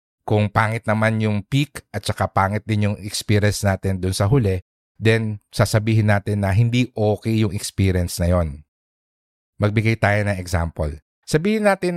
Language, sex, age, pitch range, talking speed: English, male, 50-69, 95-120 Hz, 155 wpm